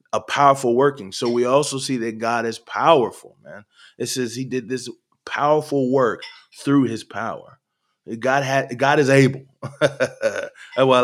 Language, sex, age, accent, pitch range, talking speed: English, male, 20-39, American, 105-125 Hz, 150 wpm